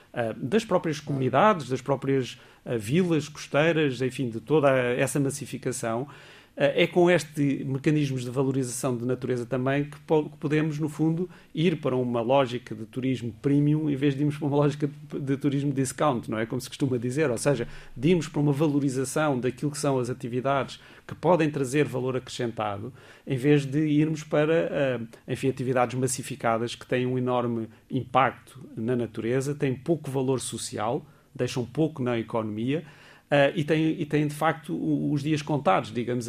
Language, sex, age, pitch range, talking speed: Portuguese, male, 40-59, 125-145 Hz, 160 wpm